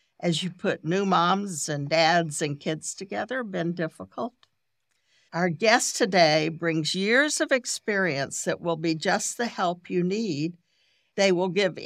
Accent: American